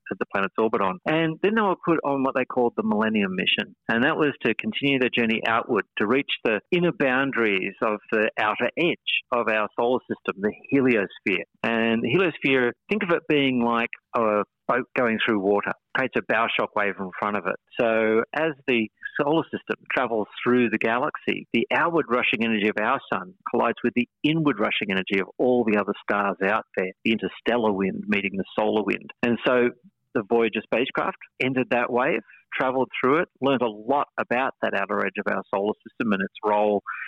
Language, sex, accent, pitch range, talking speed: English, male, Australian, 105-130 Hz, 195 wpm